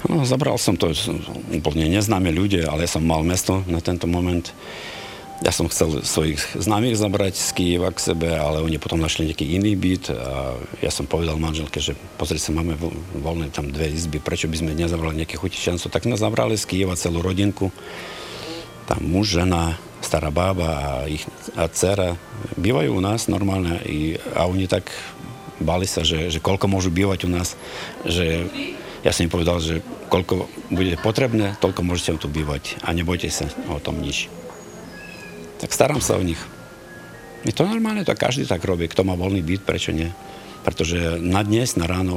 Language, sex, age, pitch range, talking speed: Slovak, male, 50-69, 80-95 Hz, 175 wpm